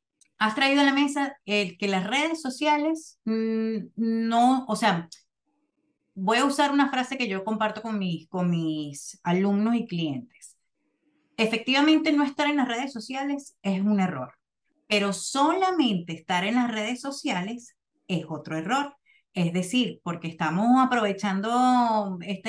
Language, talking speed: Spanish, 145 wpm